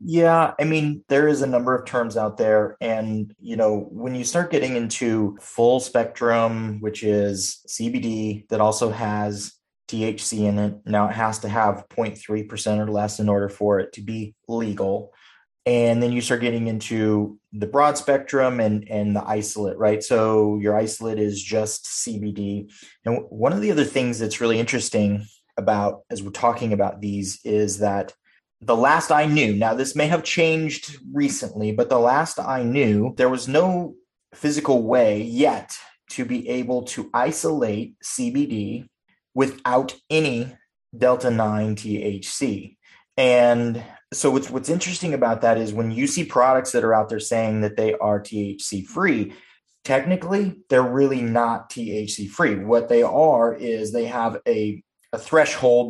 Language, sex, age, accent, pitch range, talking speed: English, male, 30-49, American, 105-130 Hz, 160 wpm